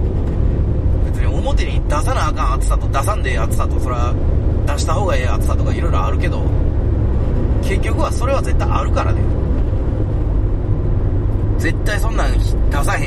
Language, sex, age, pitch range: Japanese, male, 30-49, 80-100 Hz